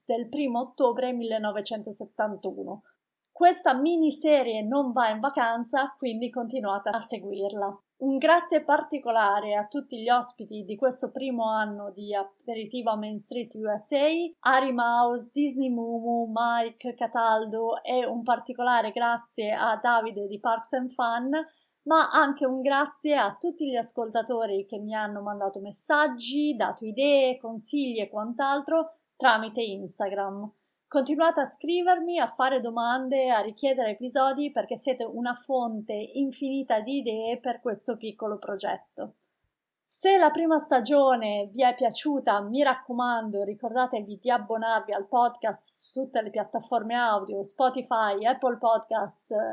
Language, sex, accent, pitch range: Italian, female, native, 220-270 Hz